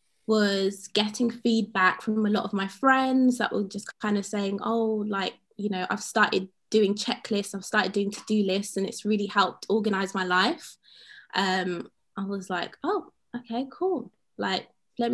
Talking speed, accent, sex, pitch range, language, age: 175 wpm, British, female, 190-230 Hz, English, 20-39